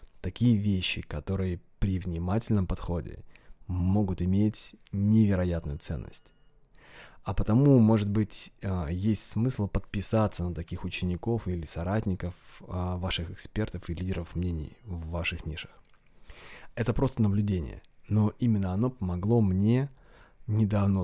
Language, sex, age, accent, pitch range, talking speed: Russian, male, 20-39, native, 90-110 Hz, 110 wpm